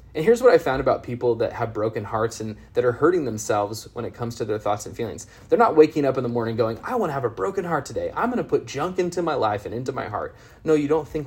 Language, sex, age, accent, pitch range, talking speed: English, male, 20-39, American, 110-145 Hz, 300 wpm